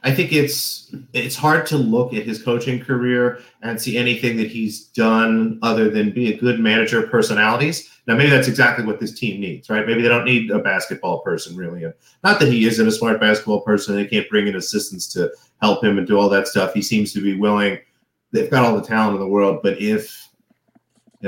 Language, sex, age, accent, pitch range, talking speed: English, male, 30-49, American, 105-125 Hz, 225 wpm